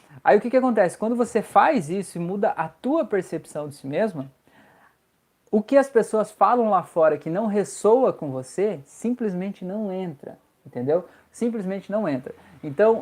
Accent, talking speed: Brazilian, 170 wpm